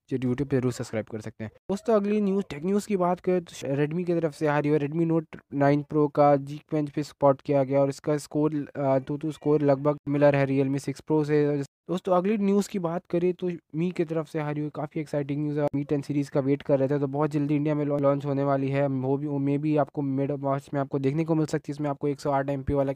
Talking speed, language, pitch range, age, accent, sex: 270 wpm, Hindi, 135-155 Hz, 20-39, native, male